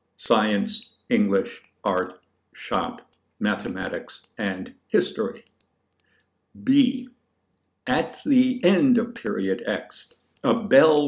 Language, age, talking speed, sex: English, 60-79, 85 wpm, male